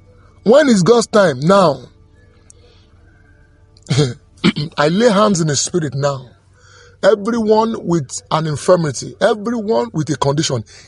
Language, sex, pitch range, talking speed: English, male, 155-235 Hz, 110 wpm